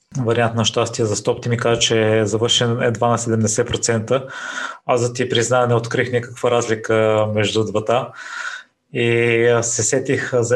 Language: Bulgarian